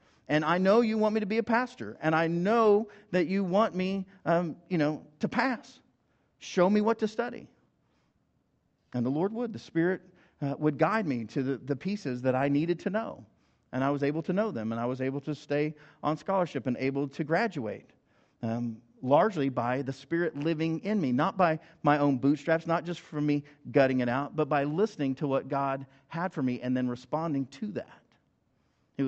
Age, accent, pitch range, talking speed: 50-69, American, 140-190 Hz, 205 wpm